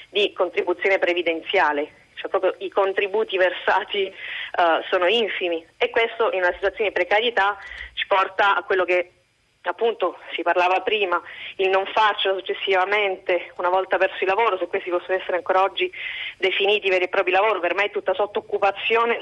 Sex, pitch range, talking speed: female, 185-220 Hz, 165 wpm